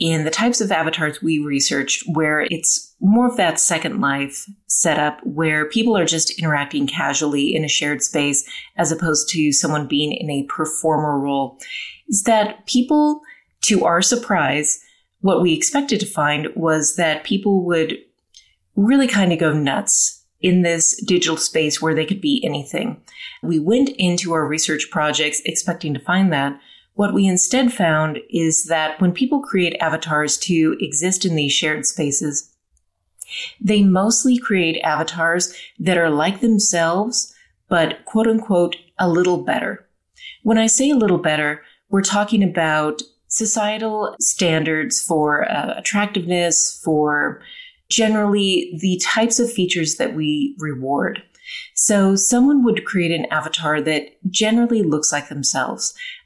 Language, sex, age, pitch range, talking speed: English, female, 30-49, 155-210 Hz, 145 wpm